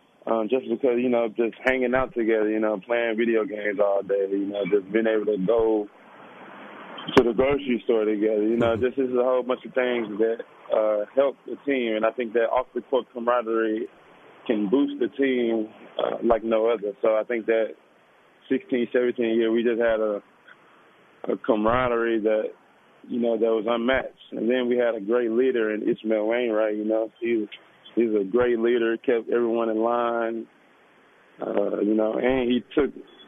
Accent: American